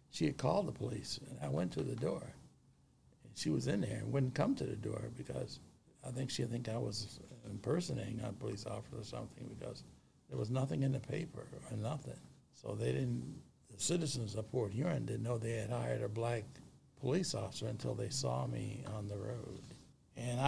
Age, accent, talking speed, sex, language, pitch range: 60-79, American, 200 wpm, male, English, 105-130 Hz